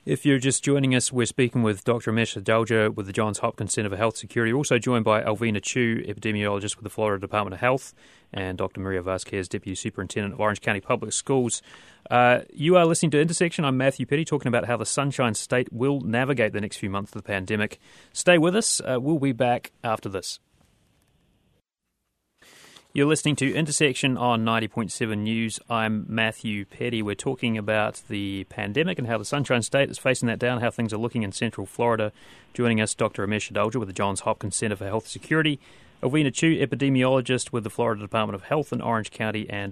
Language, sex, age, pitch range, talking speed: English, male, 30-49, 105-130 Hz, 200 wpm